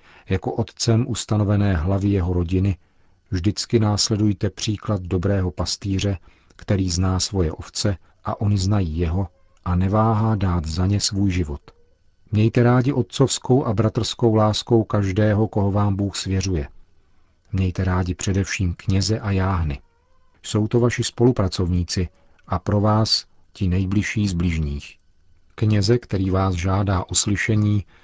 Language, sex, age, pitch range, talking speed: Czech, male, 50-69, 90-110 Hz, 130 wpm